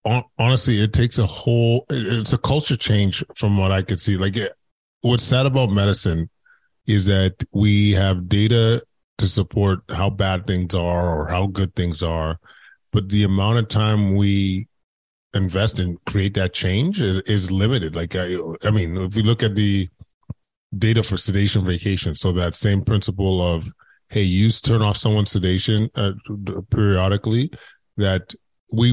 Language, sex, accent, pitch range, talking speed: English, male, American, 95-110 Hz, 160 wpm